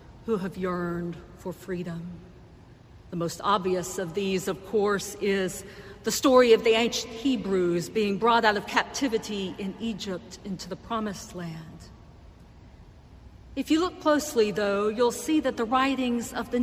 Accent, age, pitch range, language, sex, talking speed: American, 50-69, 190-245 Hz, English, female, 150 wpm